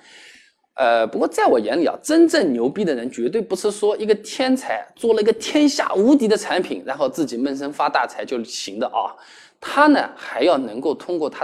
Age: 20-39